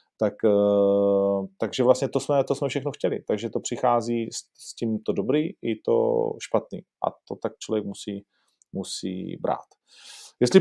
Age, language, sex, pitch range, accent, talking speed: 40-59, Czech, male, 105-135 Hz, native, 160 wpm